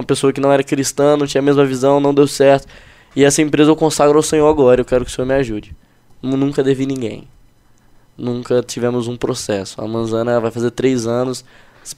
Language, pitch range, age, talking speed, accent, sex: Portuguese, 120-135 Hz, 10-29, 210 wpm, Brazilian, male